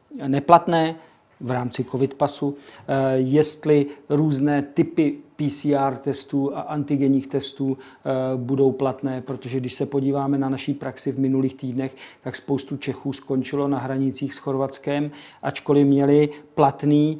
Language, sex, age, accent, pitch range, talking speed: Czech, male, 50-69, native, 135-150 Hz, 125 wpm